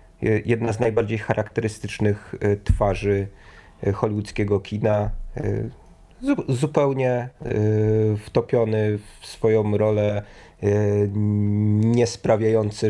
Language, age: Polish, 30-49